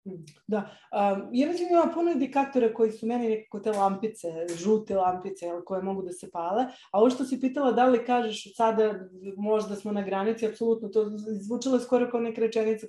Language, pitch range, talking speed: English, 205-255 Hz, 180 wpm